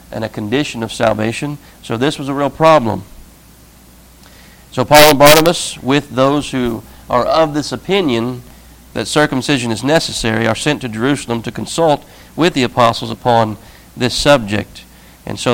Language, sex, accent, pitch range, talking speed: English, male, American, 115-140 Hz, 155 wpm